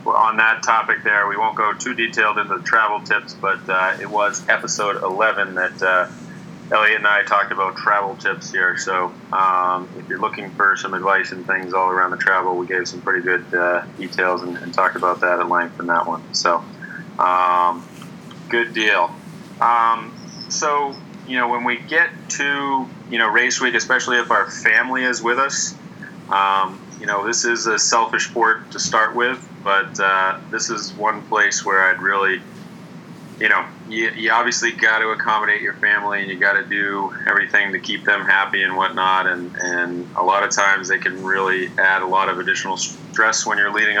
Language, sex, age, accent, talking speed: English, male, 30-49, American, 195 wpm